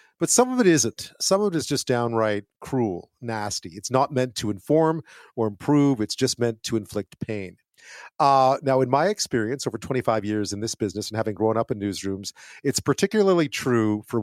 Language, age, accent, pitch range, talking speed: English, 40-59, American, 105-140 Hz, 200 wpm